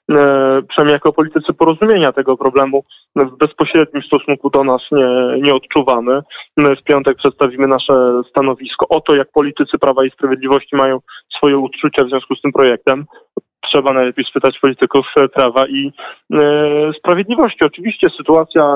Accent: native